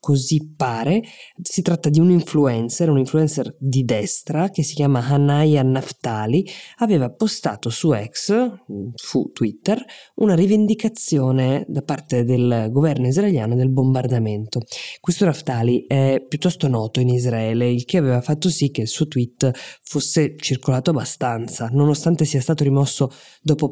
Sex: female